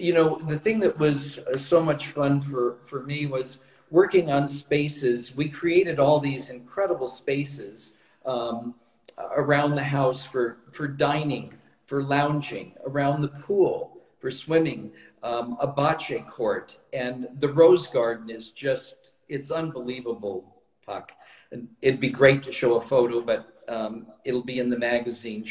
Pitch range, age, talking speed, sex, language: 125-150 Hz, 50-69, 150 wpm, male, English